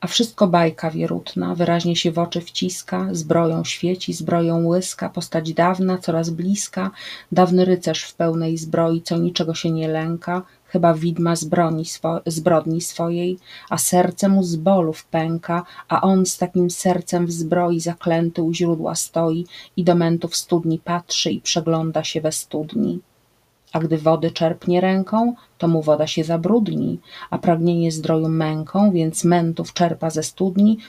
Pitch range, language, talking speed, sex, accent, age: 160-185 Hz, Polish, 155 wpm, female, native, 30-49